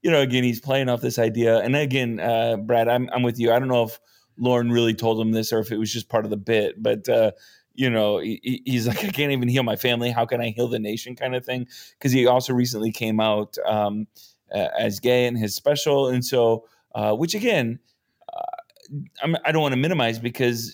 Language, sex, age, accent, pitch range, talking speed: English, male, 30-49, American, 115-135 Hz, 235 wpm